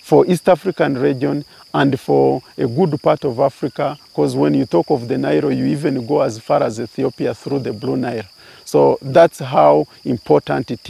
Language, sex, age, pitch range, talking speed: English, male, 50-69, 120-170 Hz, 185 wpm